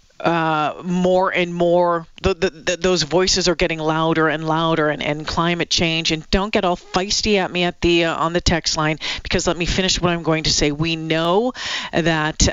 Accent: American